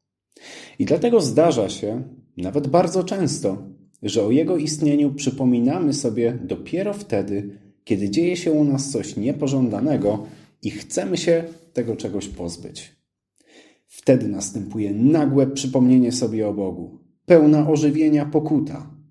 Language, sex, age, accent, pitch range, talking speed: Polish, male, 40-59, native, 105-155 Hz, 120 wpm